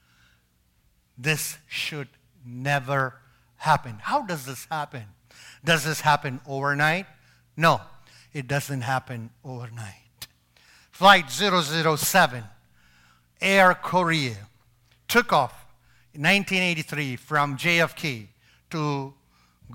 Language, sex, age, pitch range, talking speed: English, male, 50-69, 115-190 Hz, 75 wpm